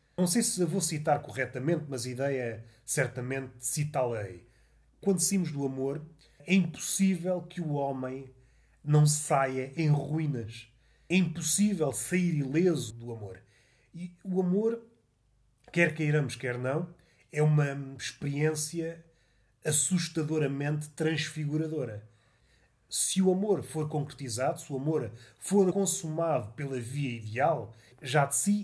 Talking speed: 120 wpm